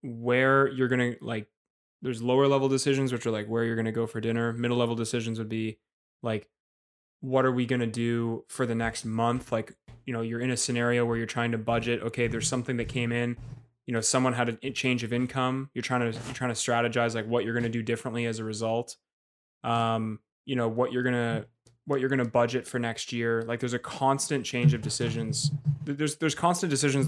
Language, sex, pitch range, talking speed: English, male, 115-130 Hz, 230 wpm